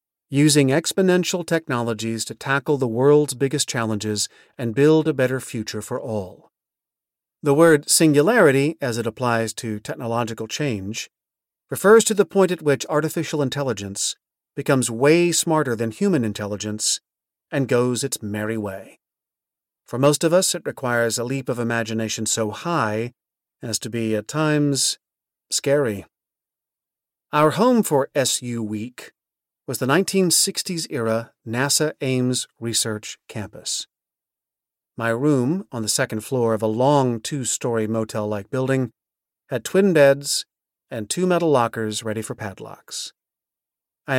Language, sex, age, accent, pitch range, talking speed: English, male, 40-59, American, 115-150 Hz, 130 wpm